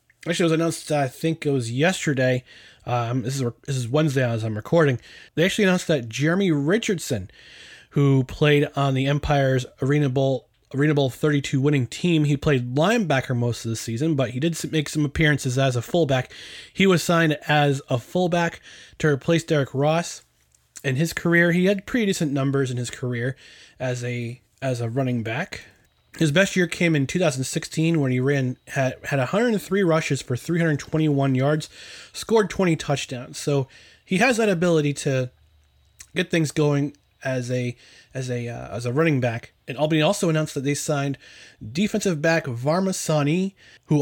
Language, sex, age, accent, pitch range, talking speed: English, male, 20-39, American, 125-165 Hz, 175 wpm